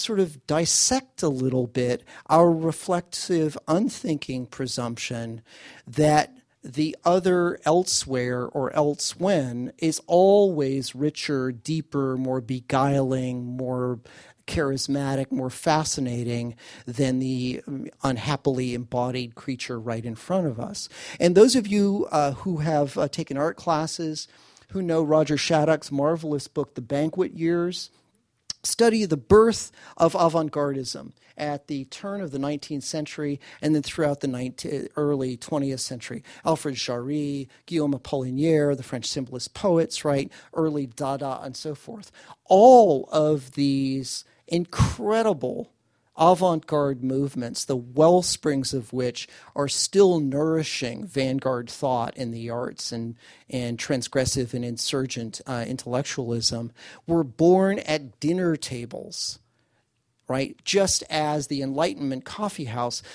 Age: 40-59